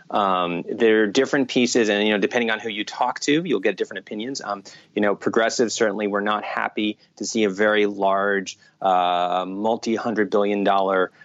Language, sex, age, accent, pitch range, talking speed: English, male, 30-49, American, 105-130 Hz, 190 wpm